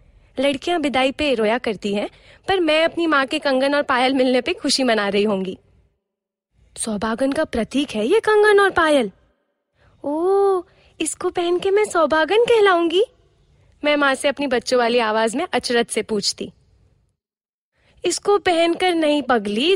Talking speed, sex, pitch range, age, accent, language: 150 wpm, female, 245-340 Hz, 20-39, native, Hindi